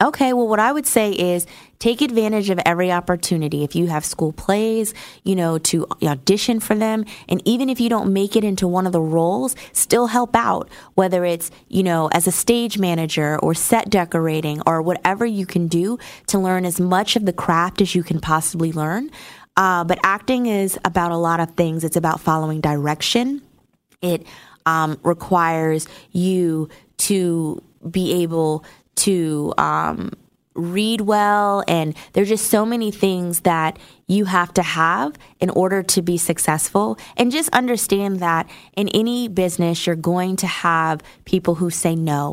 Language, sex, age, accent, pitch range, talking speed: English, female, 20-39, American, 165-200 Hz, 175 wpm